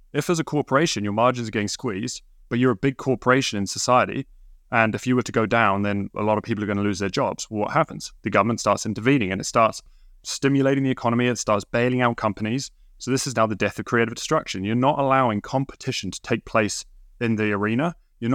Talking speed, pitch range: 235 wpm, 105-130 Hz